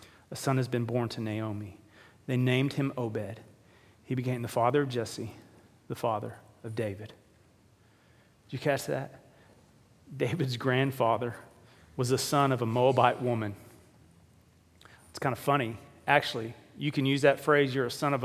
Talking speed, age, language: 160 wpm, 40-59, English